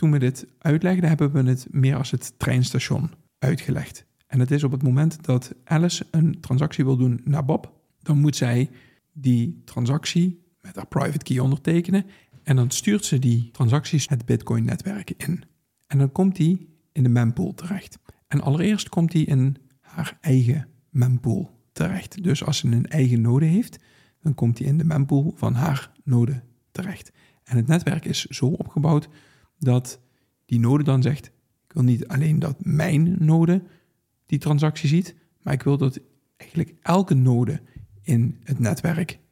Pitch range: 130-160 Hz